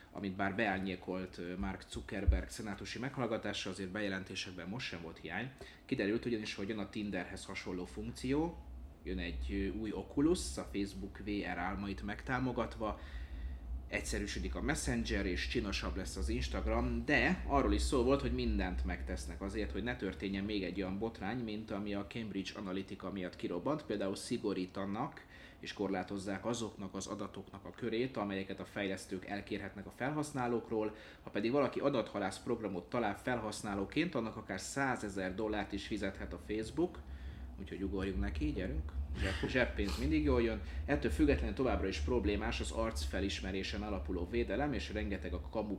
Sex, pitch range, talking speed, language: male, 90-105 Hz, 150 wpm, Hungarian